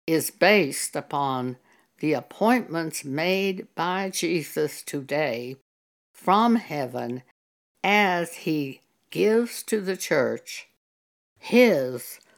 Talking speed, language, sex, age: 85 wpm, English, female, 60-79